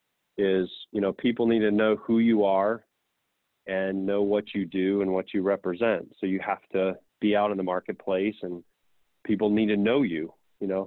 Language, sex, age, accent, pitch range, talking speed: English, male, 30-49, American, 100-110 Hz, 200 wpm